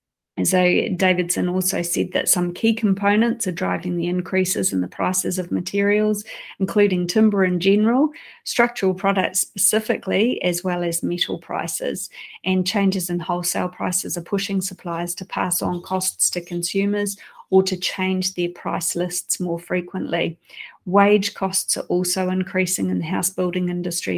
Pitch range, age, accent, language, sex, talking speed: 175-195 Hz, 30-49, Australian, English, female, 155 wpm